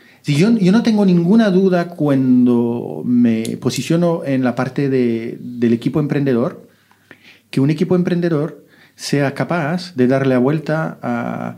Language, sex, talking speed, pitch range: Spanish, male, 145 wpm, 120-145 Hz